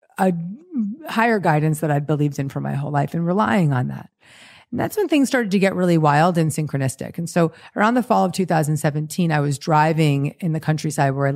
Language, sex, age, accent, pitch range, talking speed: English, female, 30-49, American, 150-180 Hz, 215 wpm